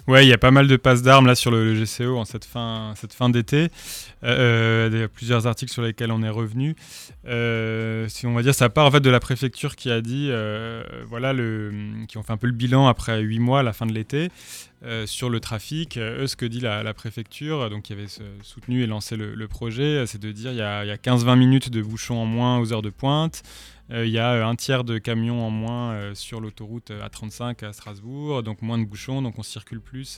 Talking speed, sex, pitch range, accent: 245 wpm, male, 110-125 Hz, French